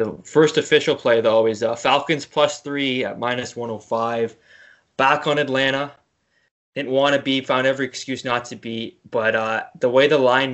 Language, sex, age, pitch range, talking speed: English, male, 20-39, 115-130 Hz, 195 wpm